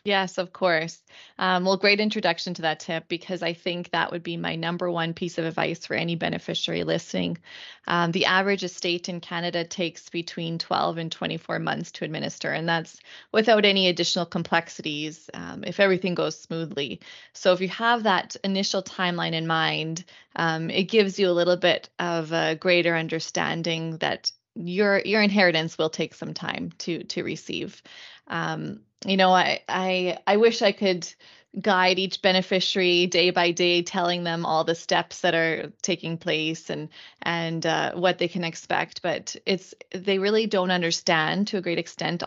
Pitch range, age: 165-190 Hz, 20-39